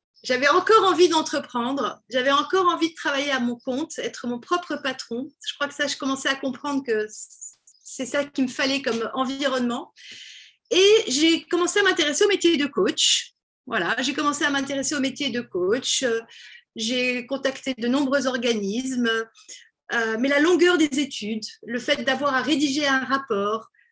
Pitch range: 255-340 Hz